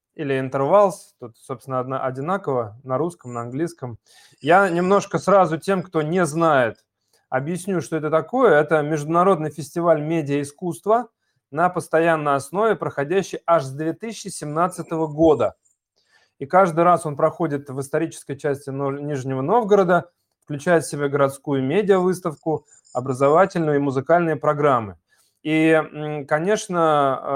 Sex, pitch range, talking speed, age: male, 135-175 Hz, 120 wpm, 20-39